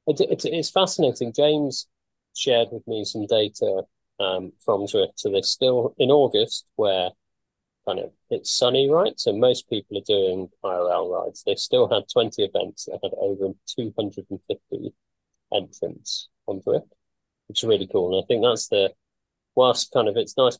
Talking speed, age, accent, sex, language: 165 wpm, 30-49, British, male, English